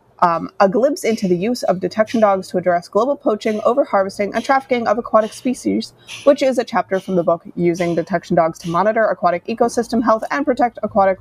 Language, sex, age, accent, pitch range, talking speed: English, female, 30-49, American, 180-235 Hz, 200 wpm